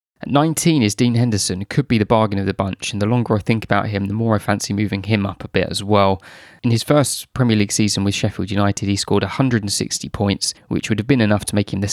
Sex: male